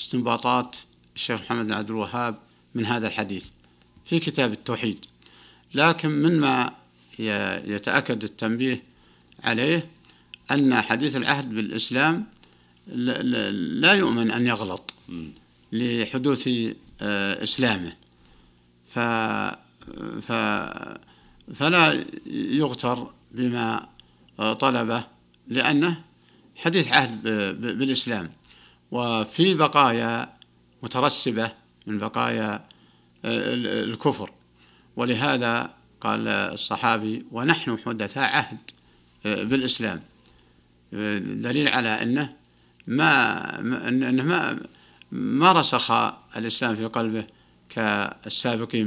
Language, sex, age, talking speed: Arabic, male, 60-79, 70 wpm